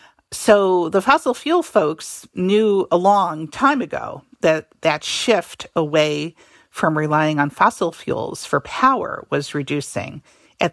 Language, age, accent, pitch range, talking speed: English, 50-69, American, 160-215 Hz, 135 wpm